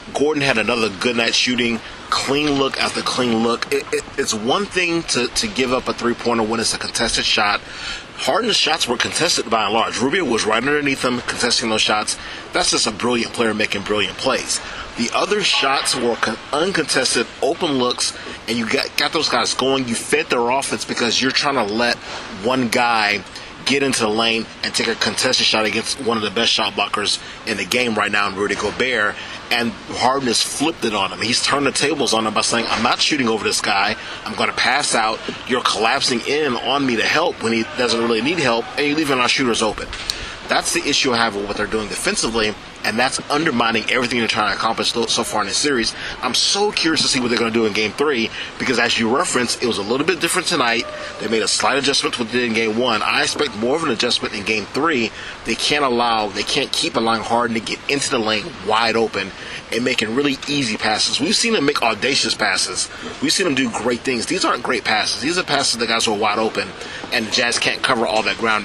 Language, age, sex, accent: English, 30-49, male, American